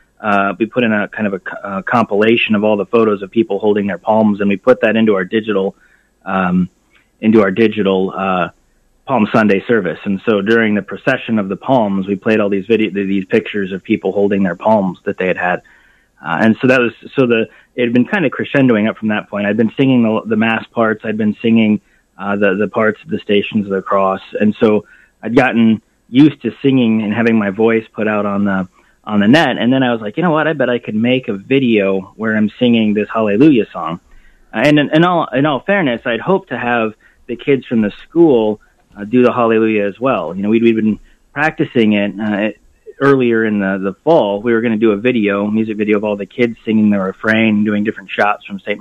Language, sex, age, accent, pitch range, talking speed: English, male, 30-49, American, 100-115 Hz, 235 wpm